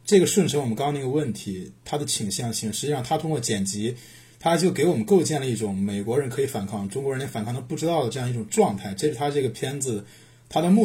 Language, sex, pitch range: Chinese, male, 115-160 Hz